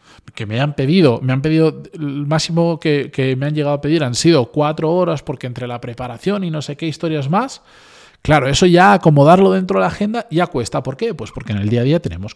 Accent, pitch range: Spanish, 130-180 Hz